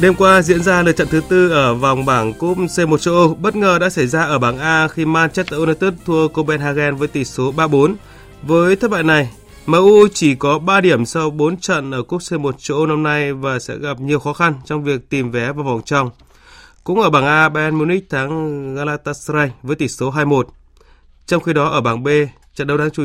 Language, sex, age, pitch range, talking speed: Vietnamese, male, 20-39, 135-165 Hz, 225 wpm